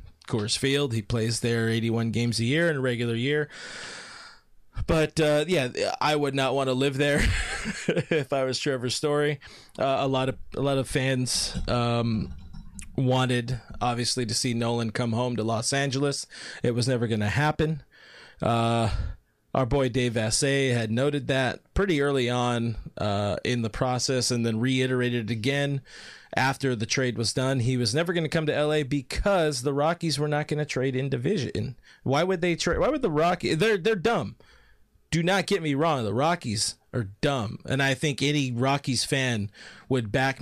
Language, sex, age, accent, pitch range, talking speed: English, male, 20-39, American, 120-150 Hz, 185 wpm